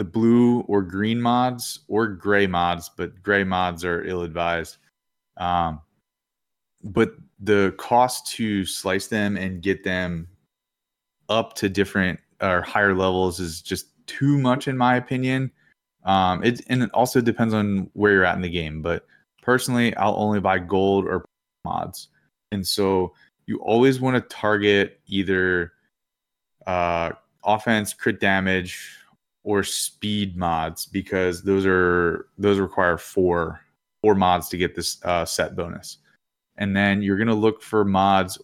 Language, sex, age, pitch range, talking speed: English, male, 20-39, 90-110 Hz, 150 wpm